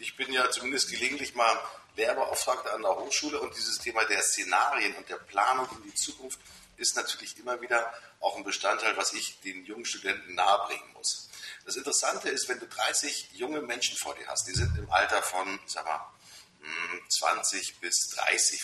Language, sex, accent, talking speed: German, male, German, 180 wpm